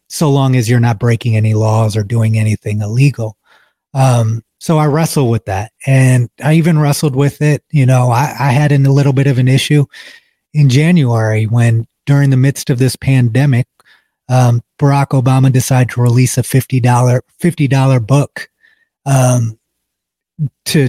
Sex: male